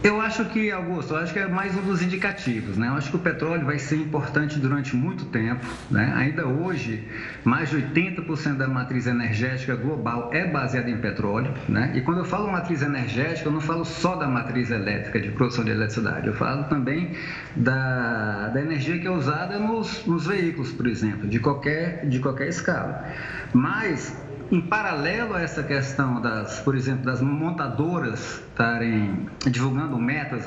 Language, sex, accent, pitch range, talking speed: Portuguese, male, Brazilian, 125-160 Hz, 175 wpm